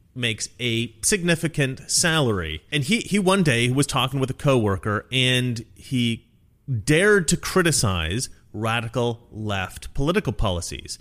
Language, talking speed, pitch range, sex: English, 125 wpm, 105-150 Hz, male